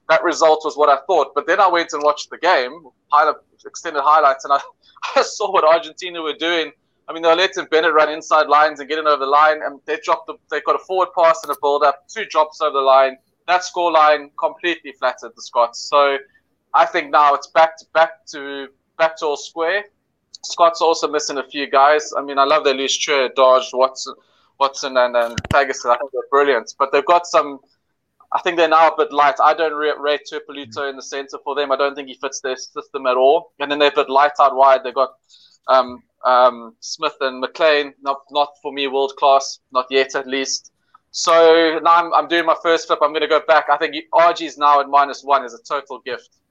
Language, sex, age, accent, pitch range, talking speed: English, male, 20-39, South African, 135-160 Hz, 230 wpm